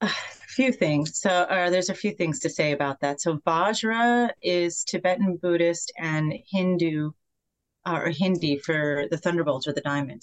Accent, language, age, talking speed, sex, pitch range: American, English, 30-49, 170 wpm, female, 150-185 Hz